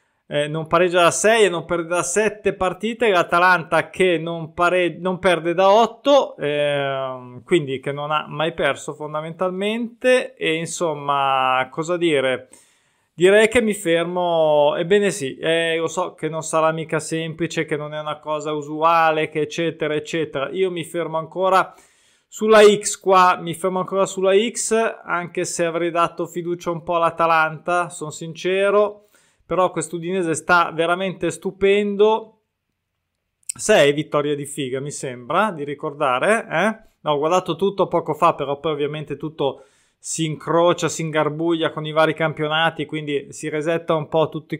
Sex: male